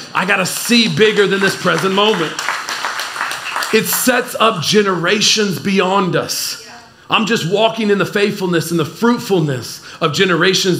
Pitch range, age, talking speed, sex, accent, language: 170-210 Hz, 40-59, 145 wpm, male, American, English